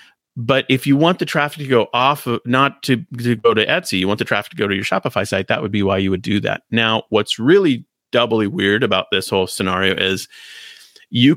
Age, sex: 30-49, male